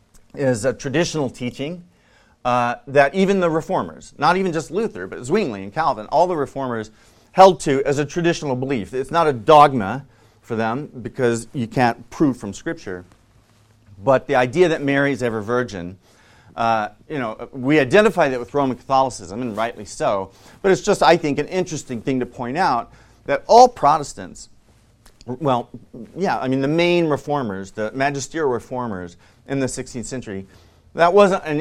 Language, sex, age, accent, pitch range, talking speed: English, male, 40-59, American, 110-145 Hz, 170 wpm